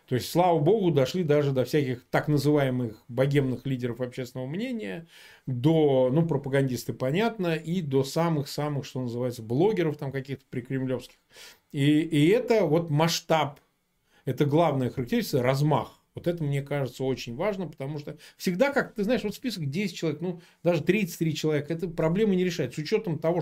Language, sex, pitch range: Russian, male, 130-175 Hz